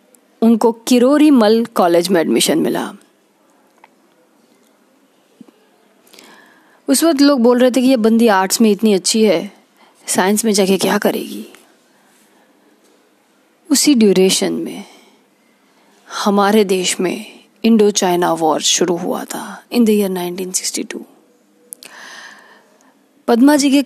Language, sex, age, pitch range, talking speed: Hindi, female, 20-39, 185-240 Hz, 115 wpm